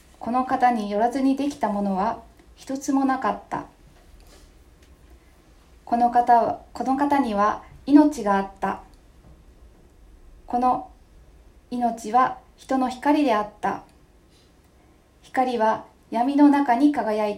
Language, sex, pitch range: Japanese, female, 175-260 Hz